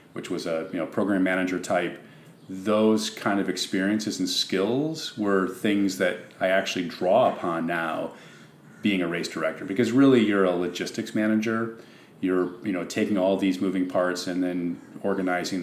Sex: male